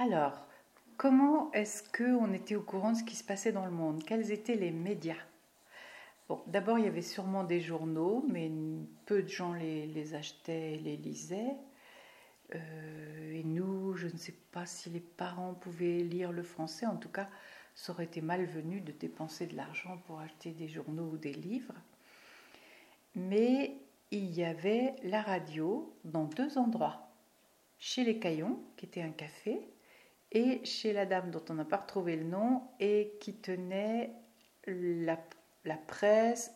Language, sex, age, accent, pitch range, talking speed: French, female, 60-79, French, 165-215 Hz, 165 wpm